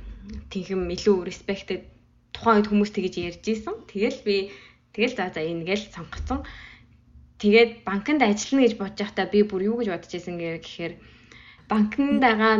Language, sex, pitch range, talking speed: English, female, 175-220 Hz, 130 wpm